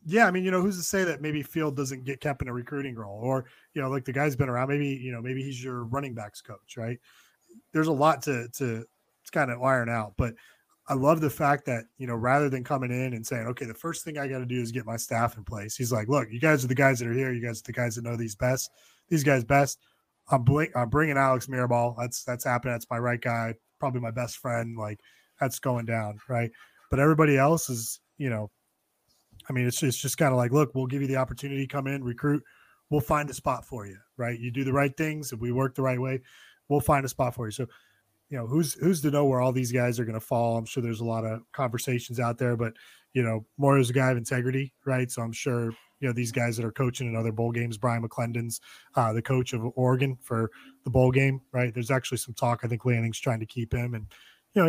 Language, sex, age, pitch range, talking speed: English, male, 20-39, 120-140 Hz, 265 wpm